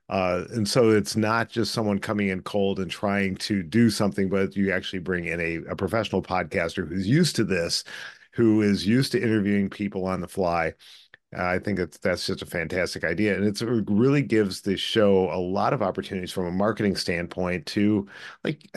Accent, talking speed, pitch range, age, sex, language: American, 195 wpm, 95-110 Hz, 40-59, male, English